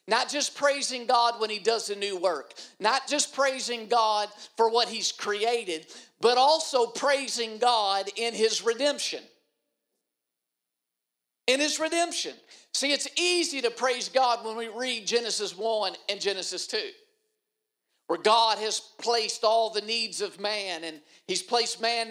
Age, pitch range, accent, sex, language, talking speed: 50-69, 210-260 Hz, American, male, English, 150 wpm